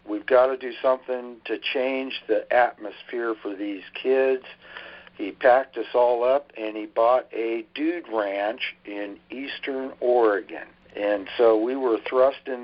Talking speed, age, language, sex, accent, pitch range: 150 wpm, 60-79, English, male, American, 105-125 Hz